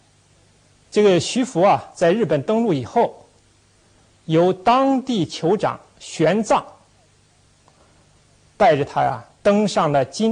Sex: male